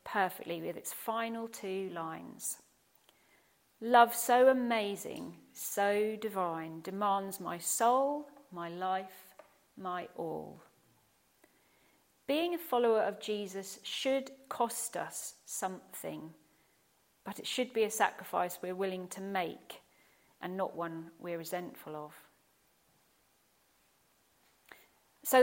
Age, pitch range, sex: 40-59, 185-240 Hz, female